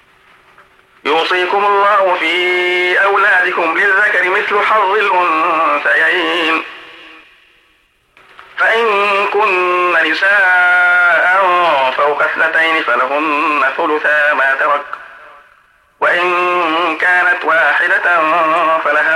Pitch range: 145-180 Hz